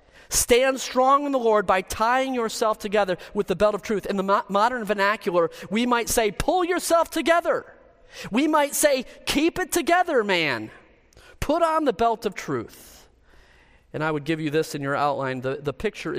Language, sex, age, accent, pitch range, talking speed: English, male, 40-59, American, 155-225 Hz, 180 wpm